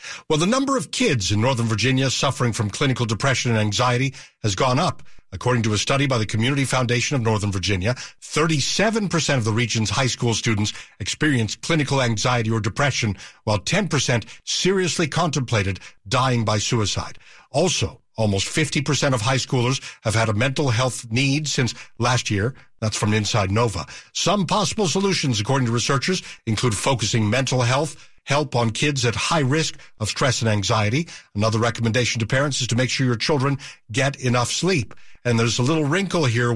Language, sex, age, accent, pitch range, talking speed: English, male, 60-79, American, 115-145 Hz, 170 wpm